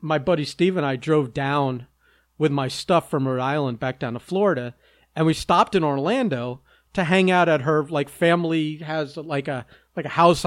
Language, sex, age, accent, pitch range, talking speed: English, male, 40-59, American, 135-180 Hz, 200 wpm